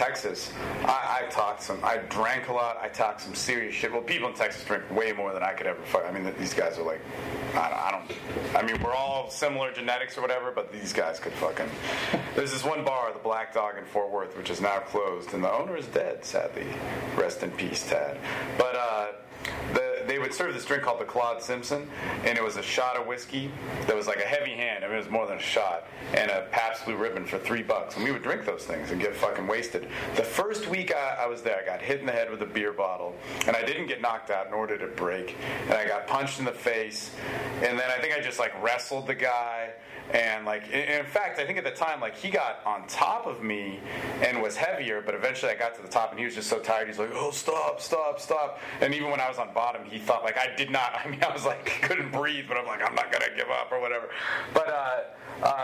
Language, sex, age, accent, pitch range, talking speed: English, male, 40-59, American, 110-135 Hz, 255 wpm